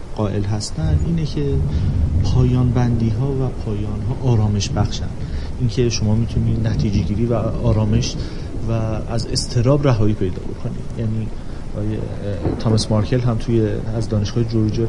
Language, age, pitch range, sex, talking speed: Persian, 30-49, 105-125 Hz, male, 135 wpm